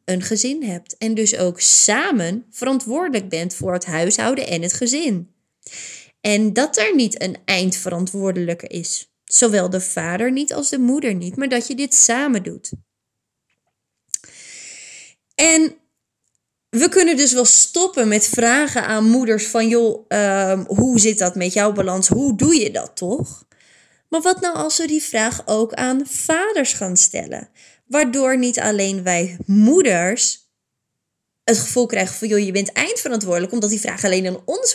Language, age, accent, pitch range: Dutch, 20-39, Dutch, 195-275 Hz